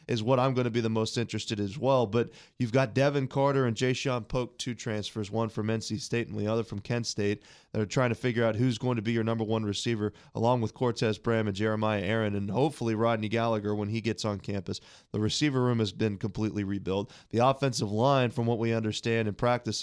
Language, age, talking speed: English, 20-39, 235 wpm